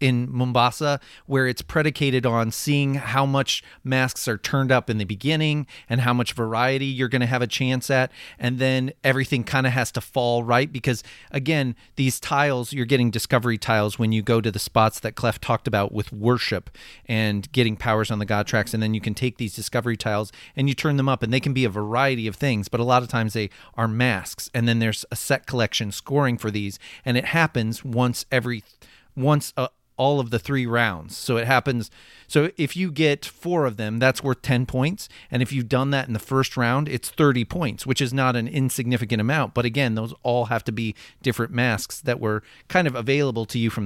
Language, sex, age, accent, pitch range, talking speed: English, male, 40-59, American, 115-135 Hz, 220 wpm